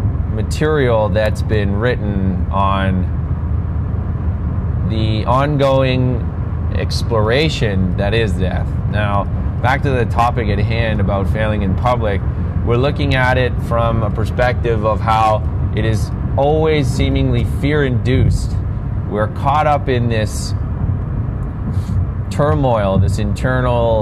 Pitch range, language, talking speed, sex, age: 95-115 Hz, English, 110 wpm, male, 30-49